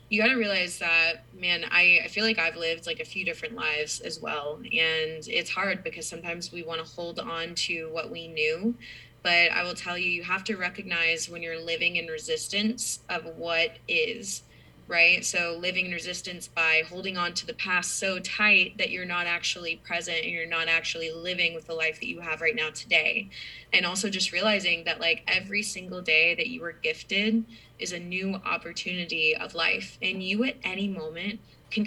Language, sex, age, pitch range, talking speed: English, female, 20-39, 165-210 Hz, 200 wpm